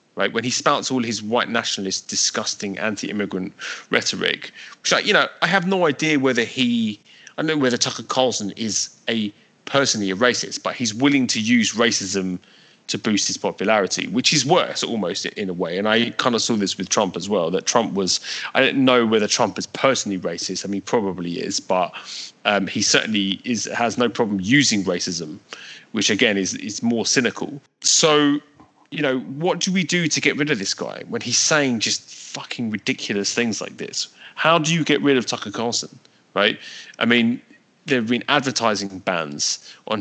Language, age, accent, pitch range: English, 30-49, British, 100-145 Hz